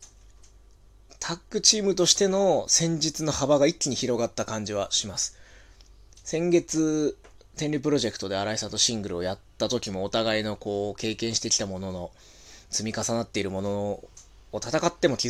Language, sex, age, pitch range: Japanese, male, 20-39, 95-150 Hz